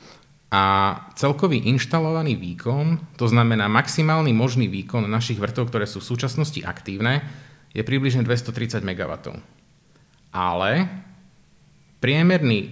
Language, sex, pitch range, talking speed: Slovak, male, 105-140 Hz, 105 wpm